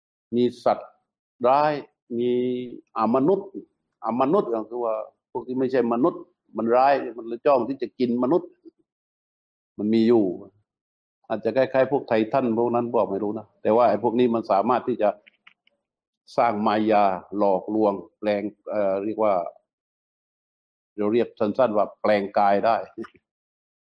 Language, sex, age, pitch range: Thai, male, 60-79, 105-130 Hz